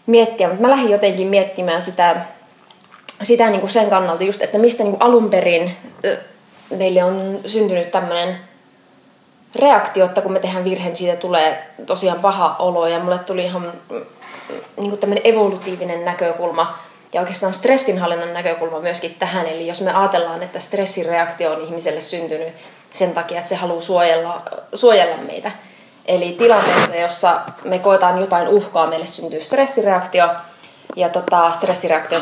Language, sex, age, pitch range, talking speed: Finnish, female, 20-39, 170-195 Hz, 140 wpm